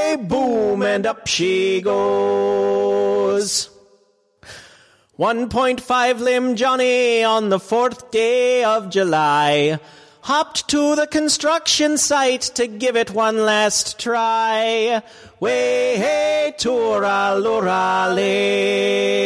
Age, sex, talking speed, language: 30-49, male, 85 wpm, English